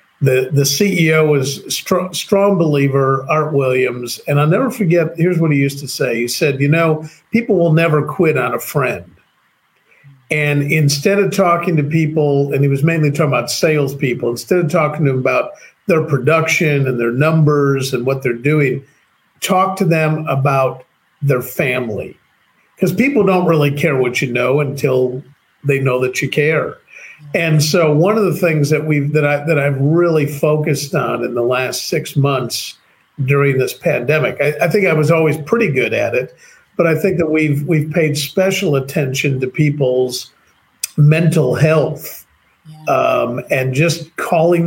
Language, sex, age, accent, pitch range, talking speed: English, male, 50-69, American, 140-165 Hz, 170 wpm